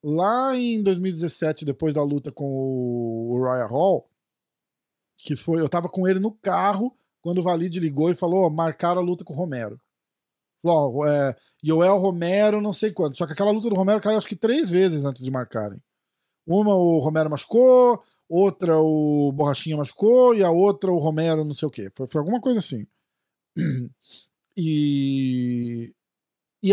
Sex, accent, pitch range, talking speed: male, Brazilian, 150-210 Hz, 170 wpm